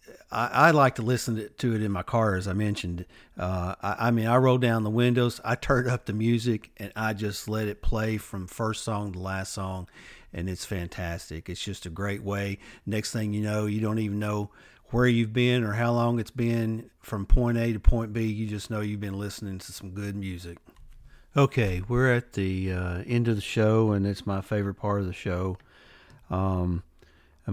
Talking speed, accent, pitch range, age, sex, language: 210 wpm, American, 95-110 Hz, 50-69, male, English